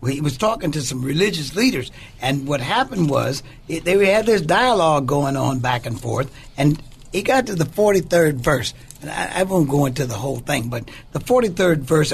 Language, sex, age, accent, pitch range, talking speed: English, male, 60-79, American, 135-195 Hz, 195 wpm